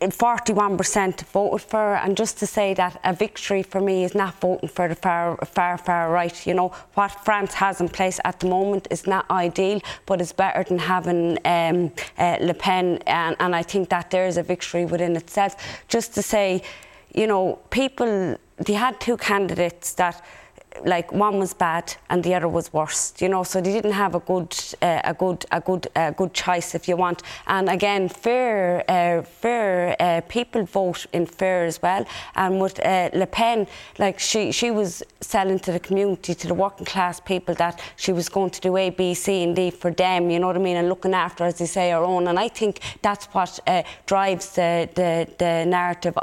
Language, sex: English, female